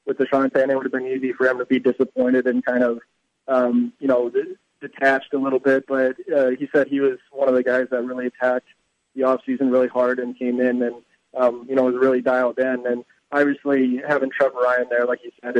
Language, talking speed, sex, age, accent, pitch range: English, 230 wpm, male, 20-39, American, 125-140 Hz